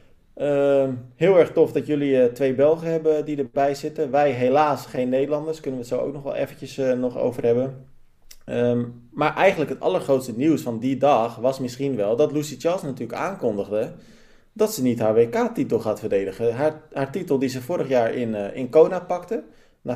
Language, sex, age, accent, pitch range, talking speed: Dutch, male, 20-39, Dutch, 120-150 Hz, 190 wpm